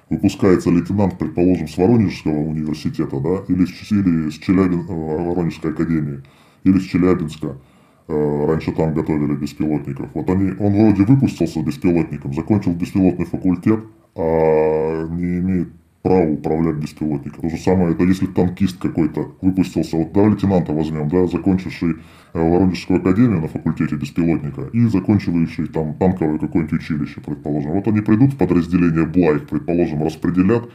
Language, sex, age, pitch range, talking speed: Russian, female, 20-39, 80-95 Hz, 135 wpm